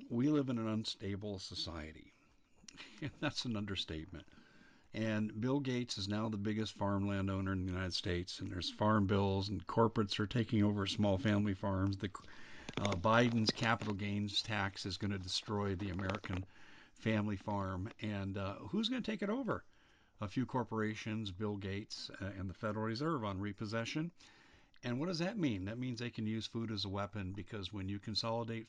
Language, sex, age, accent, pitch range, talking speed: English, male, 50-69, American, 95-120 Hz, 180 wpm